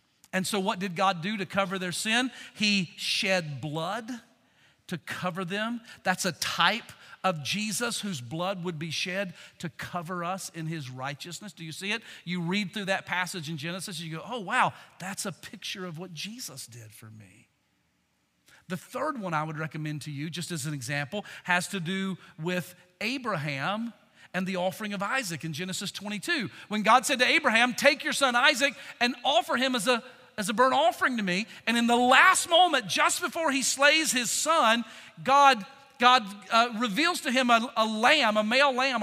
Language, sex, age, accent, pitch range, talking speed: English, male, 40-59, American, 170-240 Hz, 190 wpm